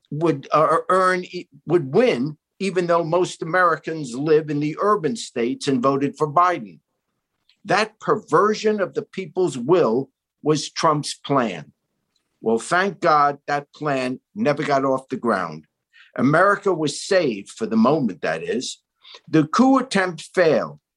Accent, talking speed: American, 140 wpm